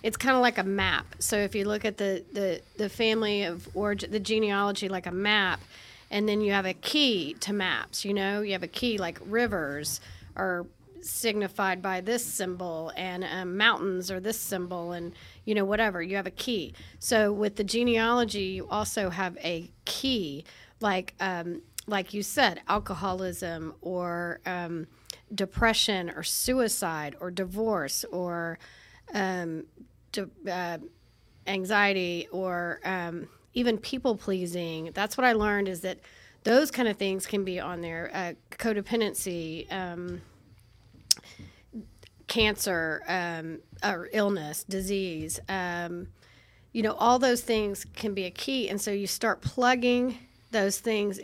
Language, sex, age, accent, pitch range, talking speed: English, female, 40-59, American, 175-215 Hz, 150 wpm